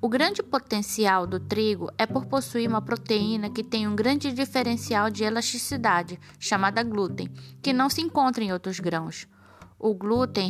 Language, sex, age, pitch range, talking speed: Portuguese, female, 20-39, 205-250 Hz, 160 wpm